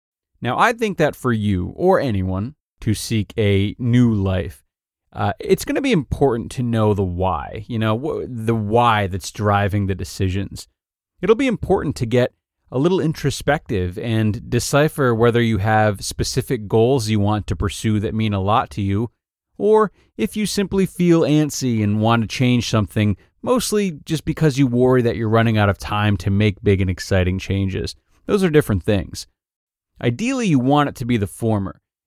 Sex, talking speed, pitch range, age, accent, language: male, 180 wpm, 105-135 Hz, 30-49, American, English